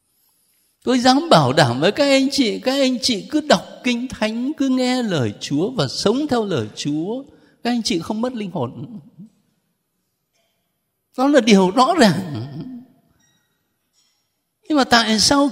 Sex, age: male, 60-79